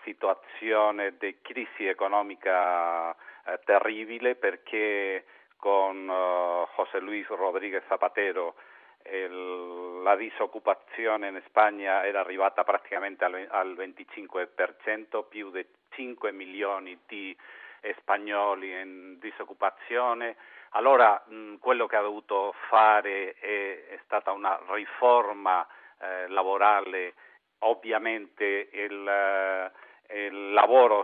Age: 50-69